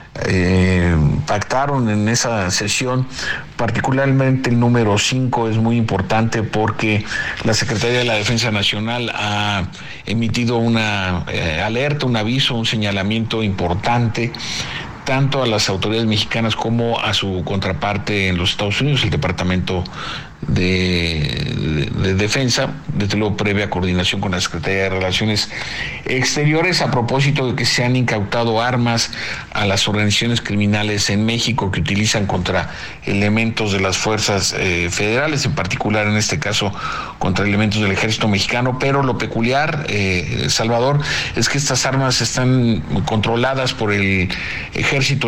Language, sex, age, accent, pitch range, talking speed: Spanish, male, 50-69, Mexican, 100-125 Hz, 140 wpm